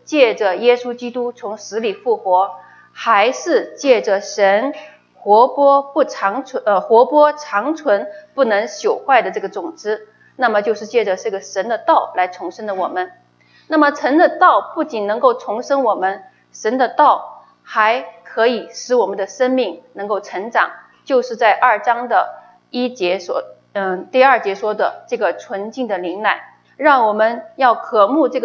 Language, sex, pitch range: English, female, 195-275 Hz